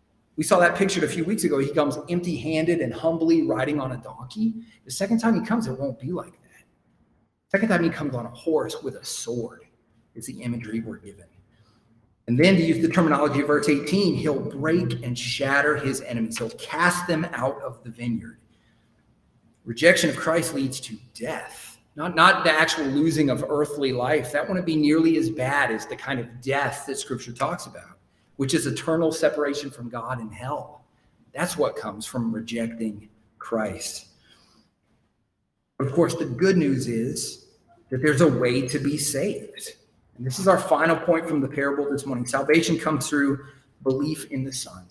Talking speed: 185 wpm